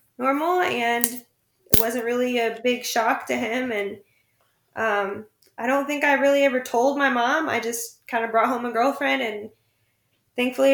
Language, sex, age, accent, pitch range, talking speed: English, female, 10-29, American, 195-240 Hz, 175 wpm